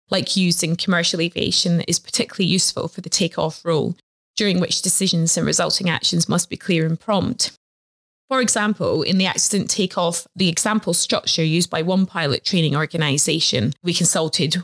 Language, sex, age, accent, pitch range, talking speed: English, female, 20-39, British, 160-185 Hz, 165 wpm